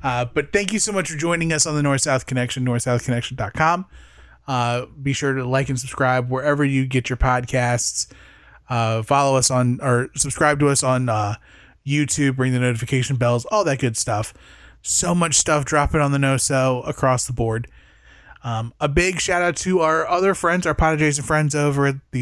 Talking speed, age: 190 wpm, 20-39